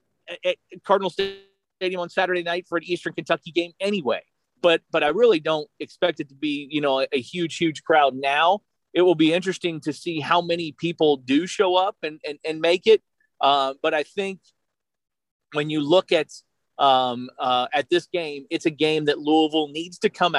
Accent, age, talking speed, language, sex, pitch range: American, 40-59, 195 wpm, English, male, 140-175 Hz